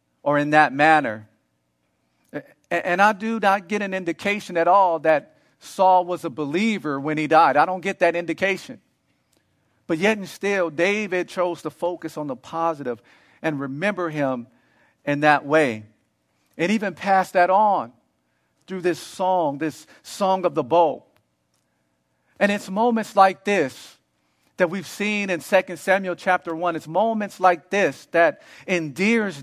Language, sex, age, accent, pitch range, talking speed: English, male, 50-69, American, 135-190 Hz, 155 wpm